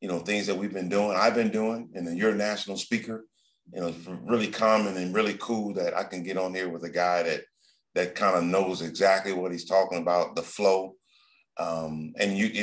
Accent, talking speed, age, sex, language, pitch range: American, 225 wpm, 40-59, male, English, 90-110 Hz